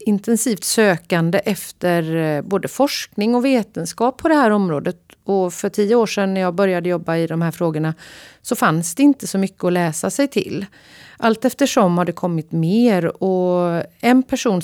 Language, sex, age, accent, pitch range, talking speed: Swedish, female, 30-49, native, 170-215 Hz, 175 wpm